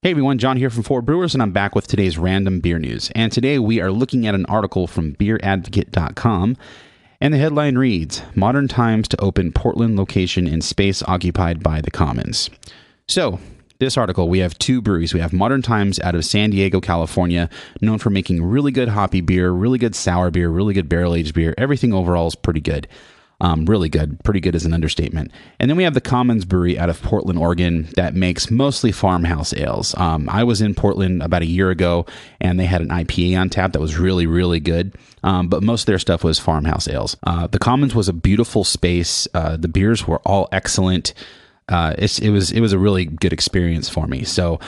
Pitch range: 85-110 Hz